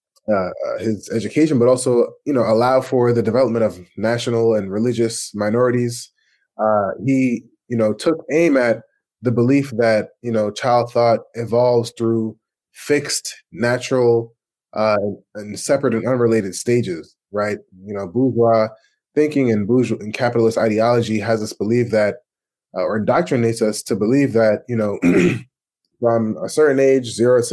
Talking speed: 150 wpm